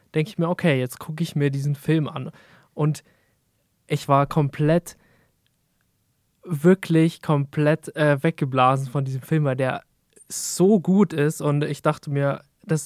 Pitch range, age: 140-160 Hz, 20-39